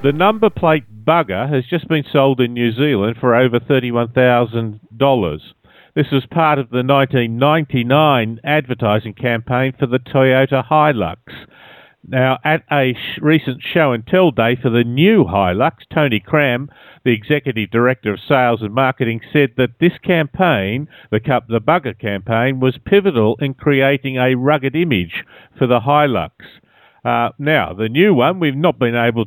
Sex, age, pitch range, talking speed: male, 50-69, 120-150 Hz, 150 wpm